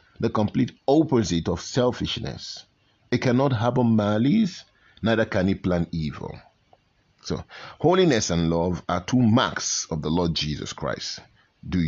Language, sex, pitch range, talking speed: English, male, 85-110 Hz, 135 wpm